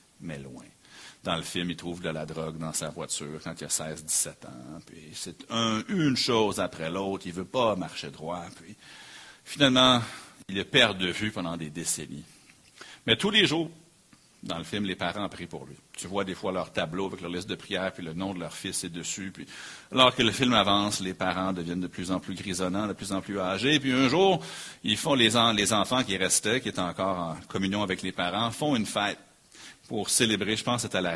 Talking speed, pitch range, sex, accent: 235 wpm, 85-110 Hz, male, Canadian